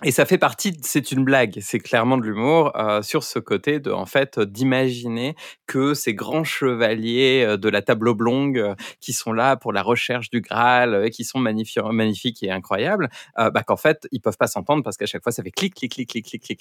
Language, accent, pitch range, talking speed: French, French, 110-165 Hz, 235 wpm